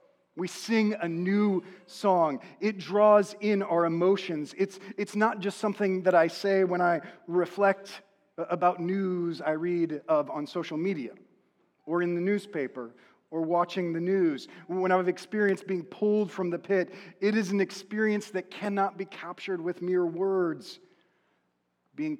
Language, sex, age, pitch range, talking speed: English, male, 40-59, 150-195 Hz, 155 wpm